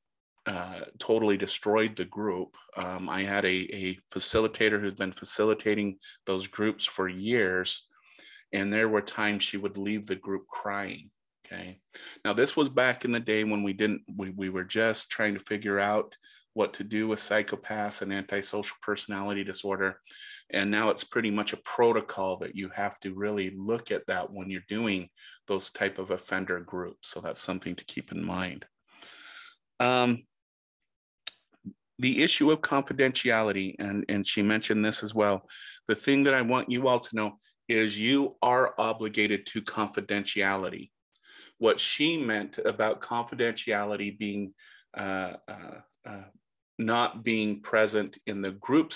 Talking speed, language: 155 wpm, English